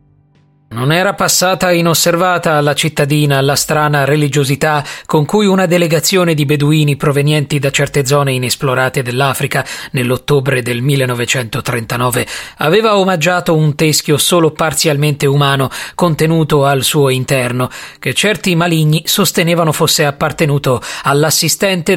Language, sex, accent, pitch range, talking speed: Italian, male, native, 135-160 Hz, 115 wpm